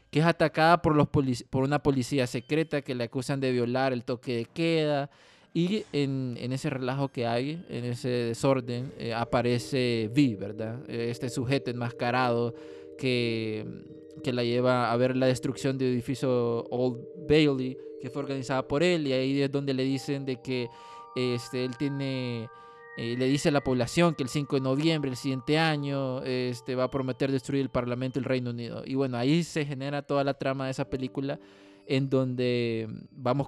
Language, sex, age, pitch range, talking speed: Spanish, male, 20-39, 125-145 Hz, 185 wpm